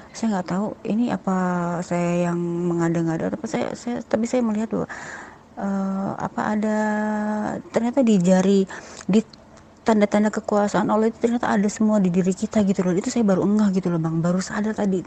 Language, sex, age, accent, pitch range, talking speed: Indonesian, female, 30-49, native, 180-220 Hz, 185 wpm